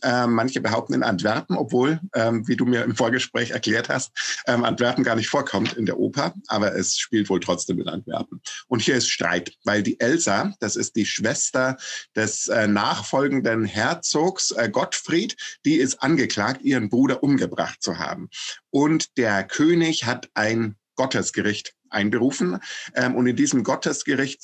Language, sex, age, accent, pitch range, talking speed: German, male, 50-69, German, 105-135 Hz, 145 wpm